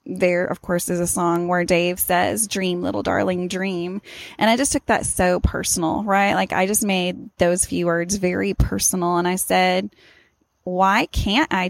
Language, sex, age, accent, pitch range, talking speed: English, female, 10-29, American, 170-205 Hz, 185 wpm